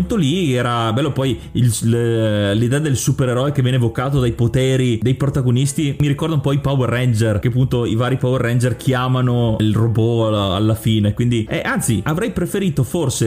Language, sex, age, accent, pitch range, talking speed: Italian, male, 30-49, native, 115-145 Hz, 175 wpm